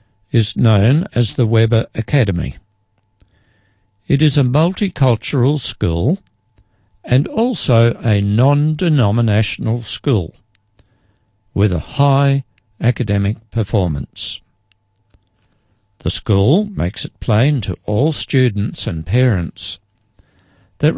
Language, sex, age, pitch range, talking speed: English, male, 60-79, 100-130 Hz, 90 wpm